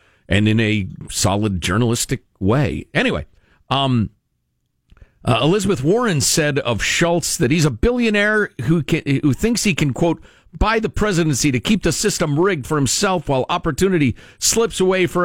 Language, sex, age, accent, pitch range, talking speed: English, male, 50-69, American, 120-180 Hz, 155 wpm